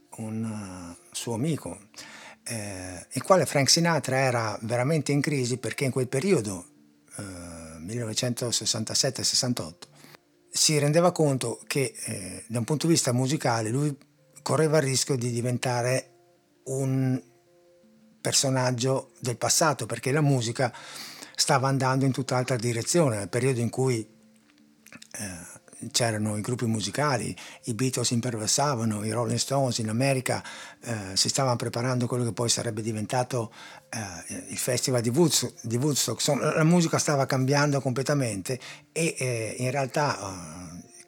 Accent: native